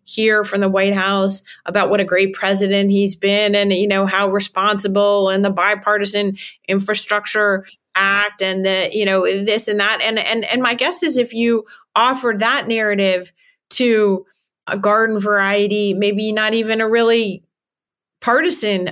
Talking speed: 160 wpm